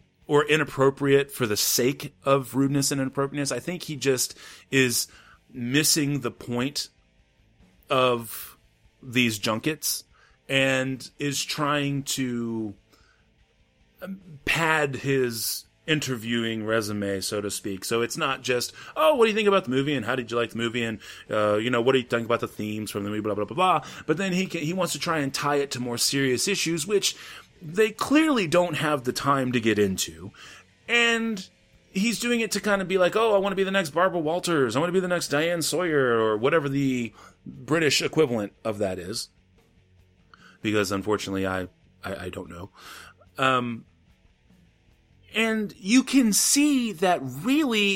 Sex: male